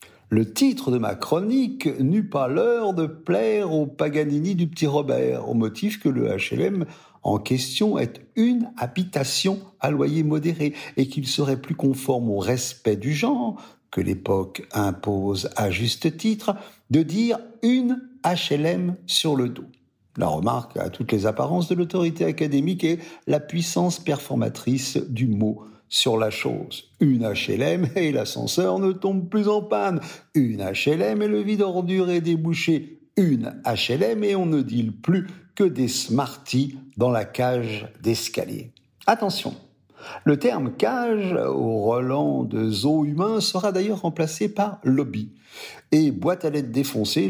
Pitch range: 125-185 Hz